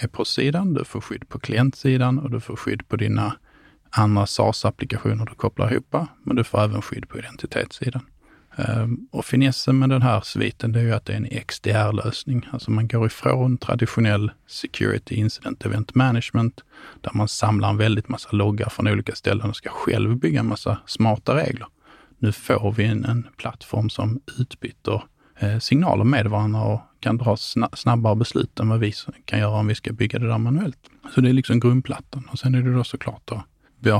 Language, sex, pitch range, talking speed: Swedish, male, 110-125 Hz, 190 wpm